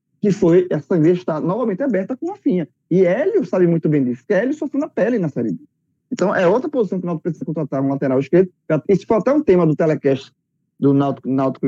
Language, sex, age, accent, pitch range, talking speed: Portuguese, male, 20-39, Brazilian, 150-225 Hz, 220 wpm